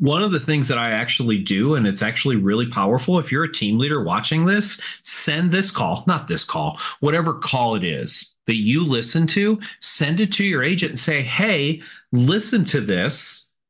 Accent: American